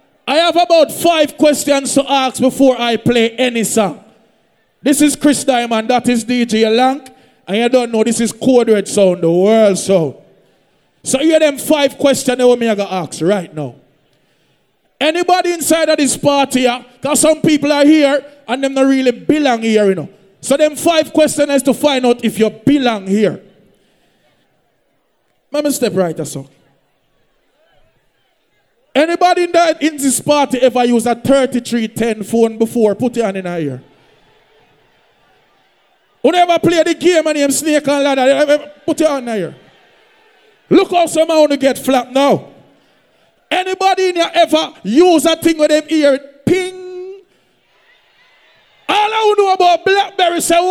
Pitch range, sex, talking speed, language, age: 230-315 Hz, male, 160 wpm, English, 20-39